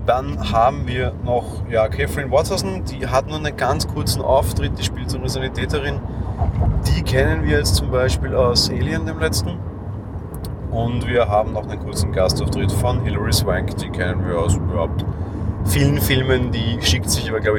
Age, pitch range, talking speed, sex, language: 30-49, 90-100 Hz, 170 wpm, male, German